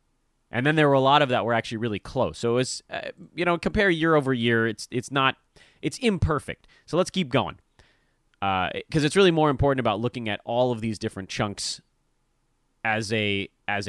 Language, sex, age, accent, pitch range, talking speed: English, male, 30-49, American, 105-135 Hz, 205 wpm